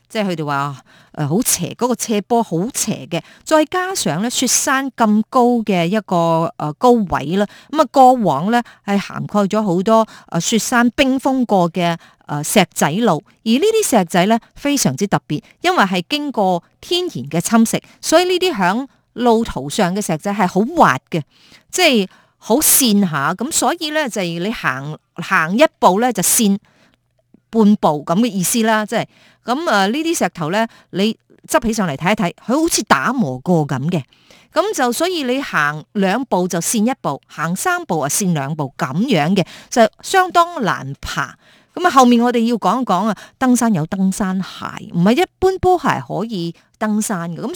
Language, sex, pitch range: Chinese, female, 175-245 Hz